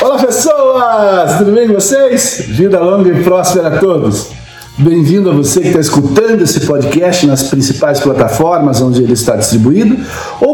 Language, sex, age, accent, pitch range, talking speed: Portuguese, male, 50-69, Brazilian, 135-220 Hz, 160 wpm